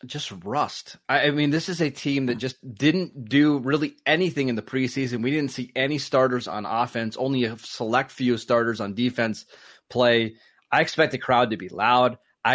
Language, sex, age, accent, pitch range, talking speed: English, male, 20-39, American, 115-140 Hz, 190 wpm